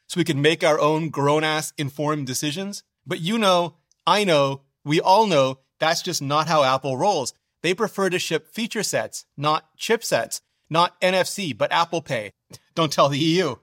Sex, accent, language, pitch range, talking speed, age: male, American, English, 145-180 Hz, 175 wpm, 30-49